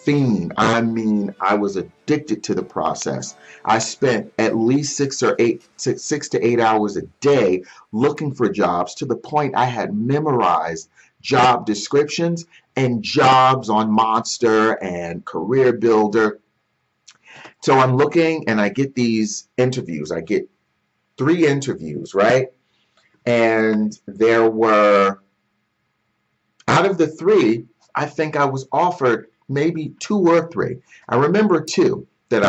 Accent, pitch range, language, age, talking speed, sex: American, 105-140 Hz, English, 40-59, 135 wpm, male